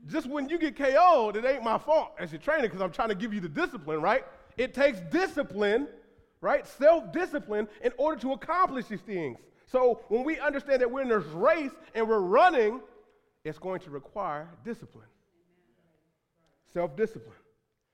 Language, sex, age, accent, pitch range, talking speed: English, male, 30-49, American, 180-260 Hz, 165 wpm